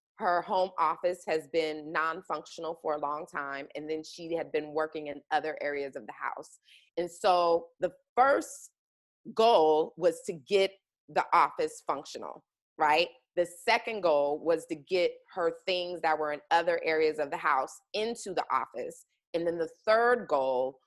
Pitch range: 160-205 Hz